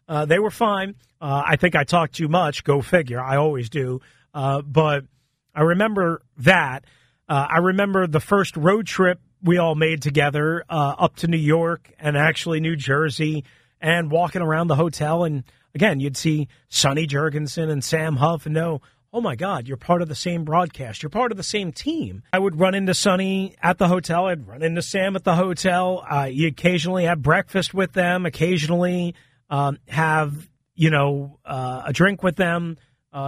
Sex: male